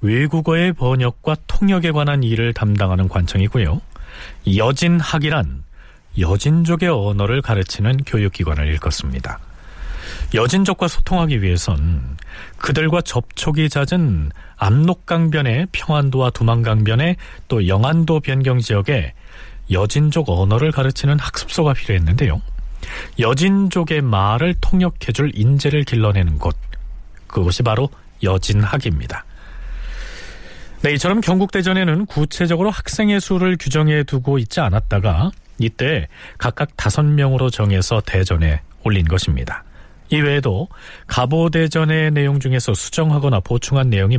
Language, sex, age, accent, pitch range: Korean, male, 40-59, native, 95-155 Hz